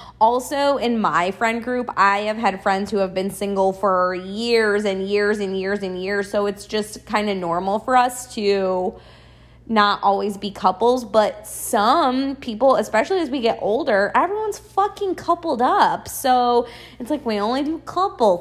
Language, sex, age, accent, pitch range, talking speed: English, female, 20-39, American, 200-305 Hz, 175 wpm